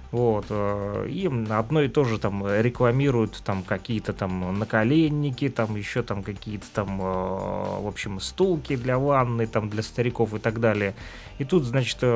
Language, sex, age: Russian, male, 30-49